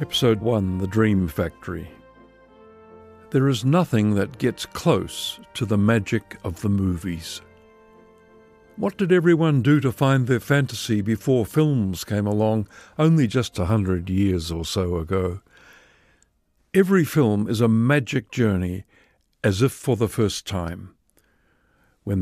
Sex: male